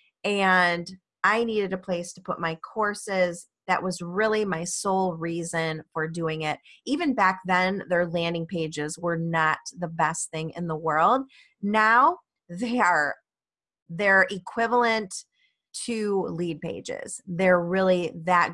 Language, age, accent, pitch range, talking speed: English, 30-49, American, 170-220 Hz, 140 wpm